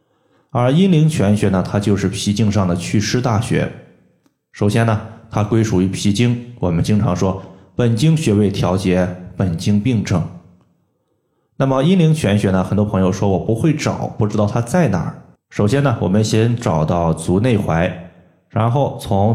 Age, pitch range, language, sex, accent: 20-39, 100-125 Hz, Chinese, male, native